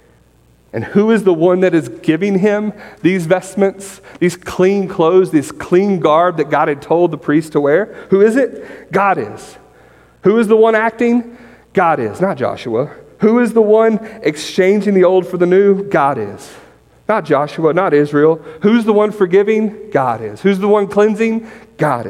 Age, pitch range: 40-59, 135-195 Hz